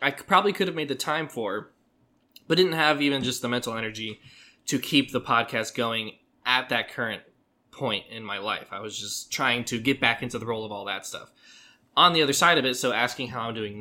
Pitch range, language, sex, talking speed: 110-145 Hz, English, male, 230 wpm